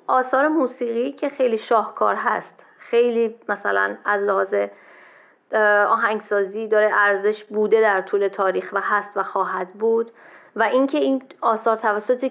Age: 30-49